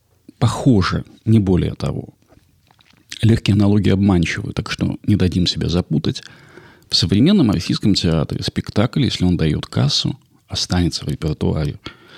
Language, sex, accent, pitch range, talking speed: Russian, male, native, 90-125 Hz, 125 wpm